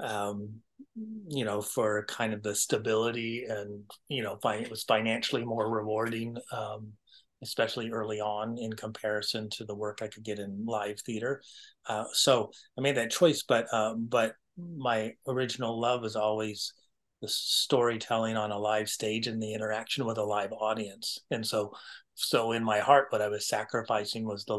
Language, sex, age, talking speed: English, male, 30-49, 170 wpm